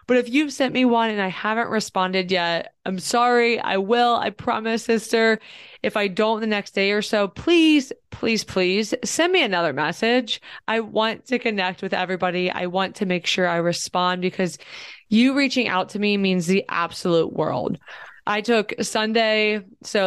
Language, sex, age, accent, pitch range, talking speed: English, female, 20-39, American, 185-230 Hz, 180 wpm